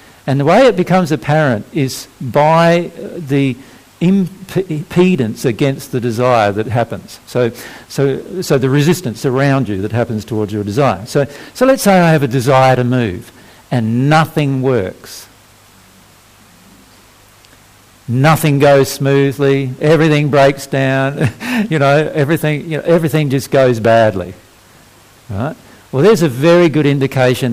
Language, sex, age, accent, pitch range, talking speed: English, male, 50-69, Australian, 115-150 Hz, 135 wpm